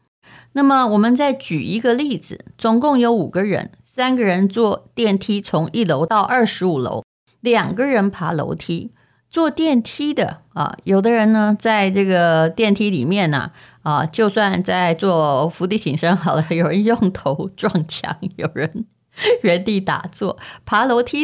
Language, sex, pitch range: Chinese, female, 165-225 Hz